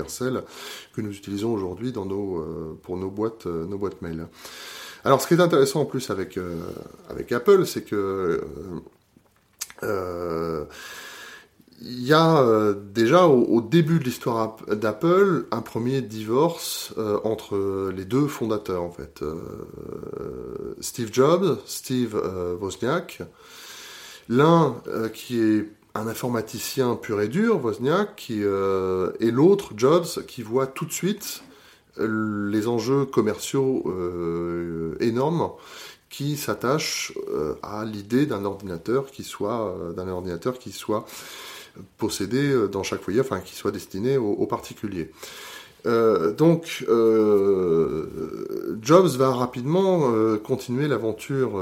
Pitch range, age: 100-140 Hz, 30-49